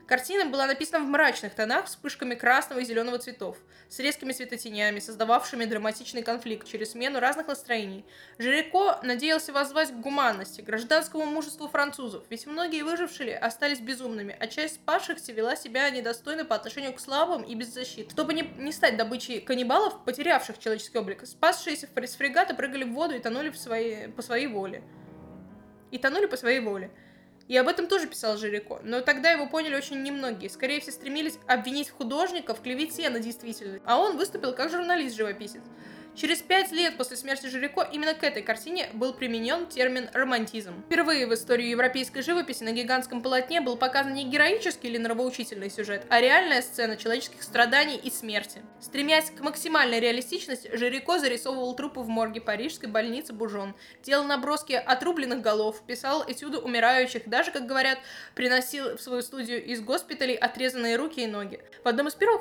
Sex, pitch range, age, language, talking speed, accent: female, 235-300 Hz, 20-39, Russian, 165 wpm, native